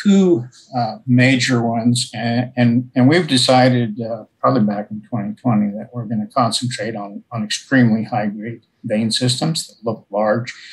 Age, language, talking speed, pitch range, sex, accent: 50-69, English, 160 wpm, 115-130 Hz, male, American